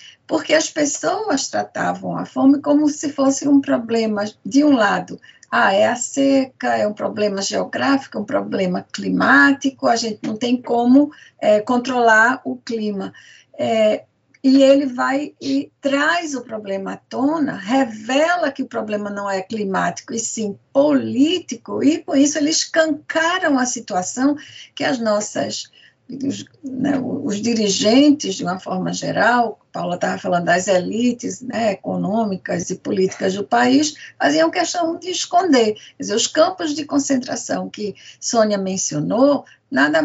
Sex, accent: female, Brazilian